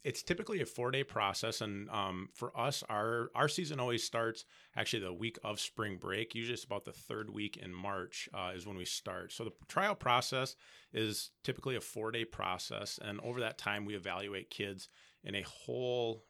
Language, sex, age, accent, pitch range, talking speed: English, male, 30-49, American, 95-115 Hz, 190 wpm